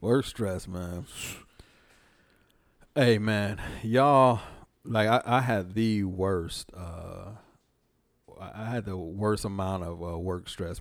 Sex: male